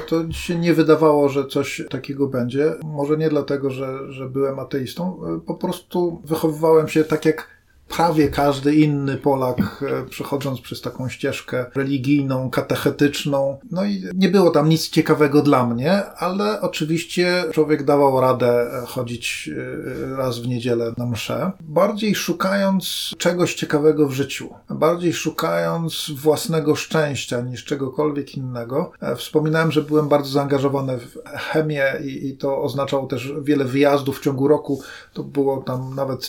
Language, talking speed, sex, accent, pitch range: Polish, 140 wpm, male, native, 135-160 Hz